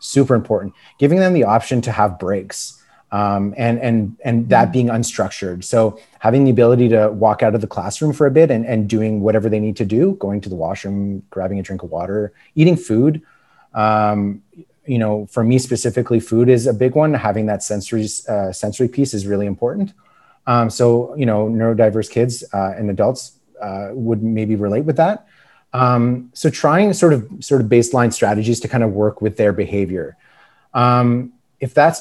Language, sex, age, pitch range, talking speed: English, male, 30-49, 105-125 Hz, 190 wpm